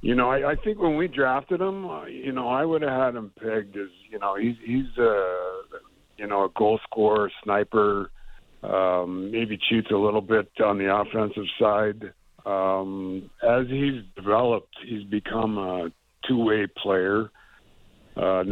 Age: 60-79